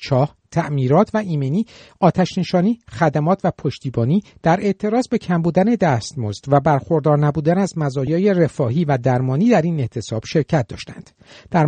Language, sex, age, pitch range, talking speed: Persian, male, 50-69, 140-200 Hz, 150 wpm